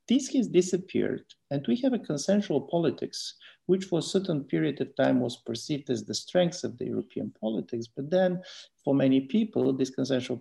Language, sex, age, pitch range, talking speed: English, male, 50-69, 110-180 Hz, 185 wpm